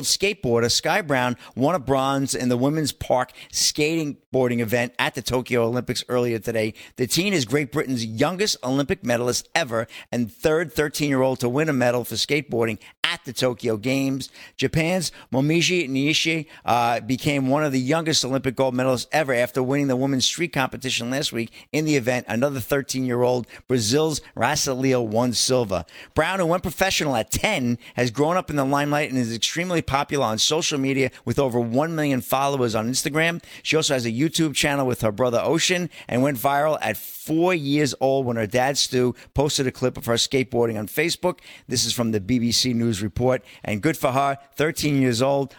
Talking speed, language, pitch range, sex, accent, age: 185 wpm, English, 120-150 Hz, male, American, 50-69